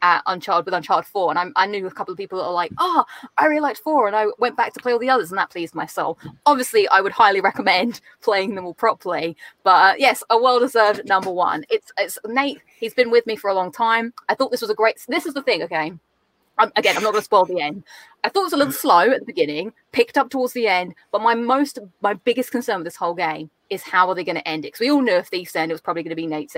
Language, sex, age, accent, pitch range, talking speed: English, female, 20-39, British, 185-265 Hz, 285 wpm